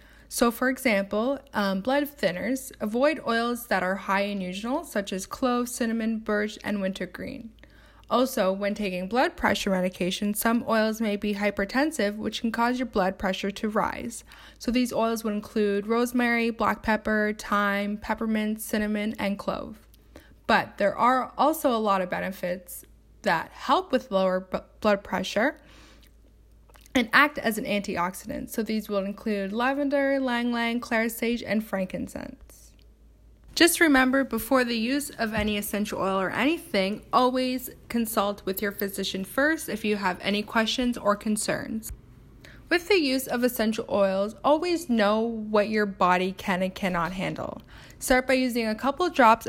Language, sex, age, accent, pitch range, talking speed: English, female, 10-29, American, 200-255 Hz, 155 wpm